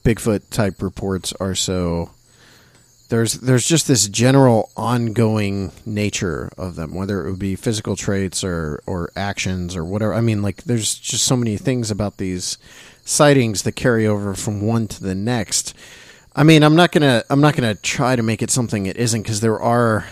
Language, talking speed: English, 185 wpm